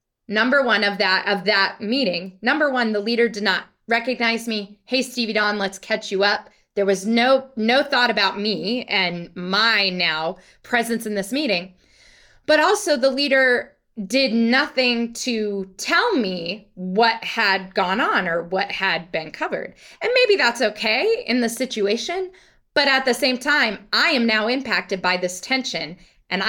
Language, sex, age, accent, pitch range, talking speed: English, female, 20-39, American, 200-265 Hz, 170 wpm